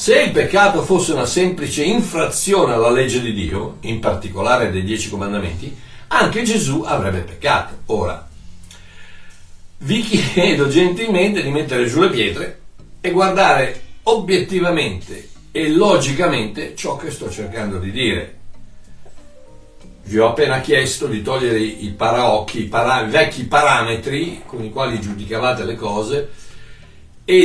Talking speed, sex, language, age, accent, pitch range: 130 wpm, male, Italian, 60-79, native, 105-155 Hz